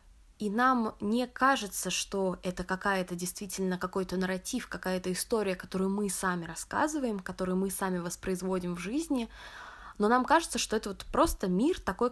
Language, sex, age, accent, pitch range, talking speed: Russian, female, 20-39, native, 175-205 Hz, 150 wpm